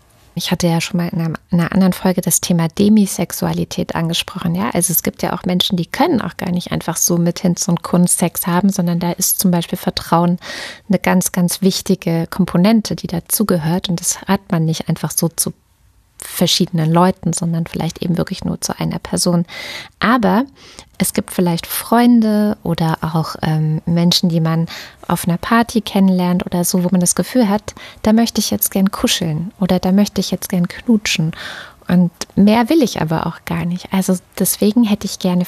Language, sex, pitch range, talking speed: German, female, 175-210 Hz, 190 wpm